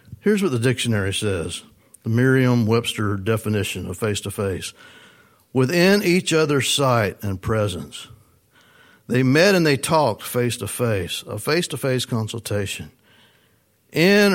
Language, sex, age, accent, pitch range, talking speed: English, male, 60-79, American, 105-130 Hz, 110 wpm